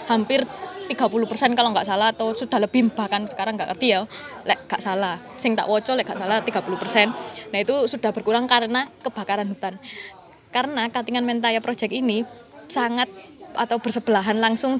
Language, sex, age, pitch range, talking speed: Indonesian, female, 20-39, 215-265 Hz, 155 wpm